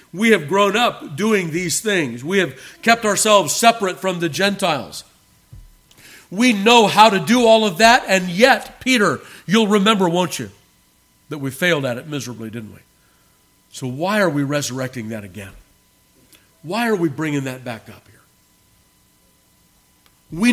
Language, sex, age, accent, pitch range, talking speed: English, male, 50-69, American, 130-185 Hz, 160 wpm